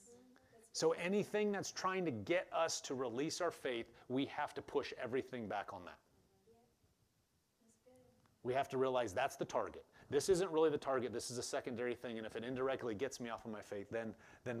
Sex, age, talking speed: male, 30-49, 195 wpm